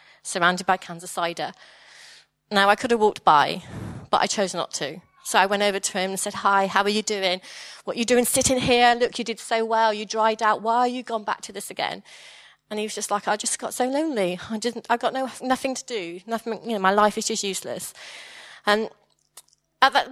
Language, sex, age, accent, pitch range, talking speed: English, female, 30-49, British, 185-235 Hz, 235 wpm